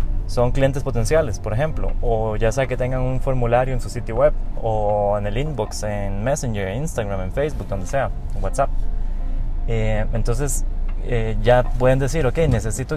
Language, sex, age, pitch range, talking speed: Spanish, male, 20-39, 100-135 Hz, 165 wpm